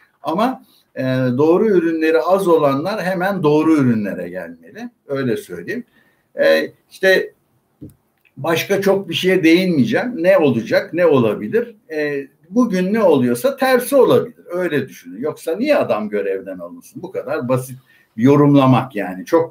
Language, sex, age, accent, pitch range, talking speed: Turkish, male, 60-79, native, 135-195 Hz, 130 wpm